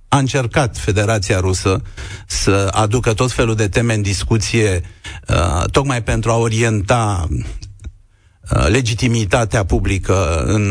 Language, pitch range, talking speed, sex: Romanian, 95-115 Hz, 120 wpm, male